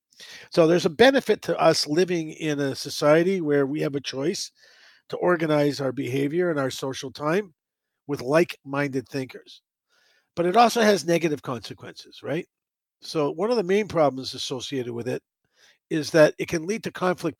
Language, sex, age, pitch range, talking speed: English, male, 50-69, 140-170 Hz, 170 wpm